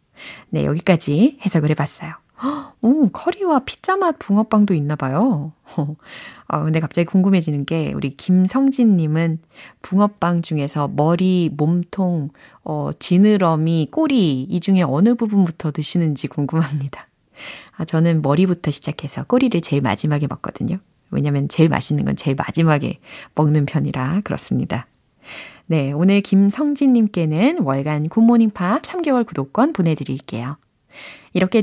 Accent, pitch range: native, 150-225 Hz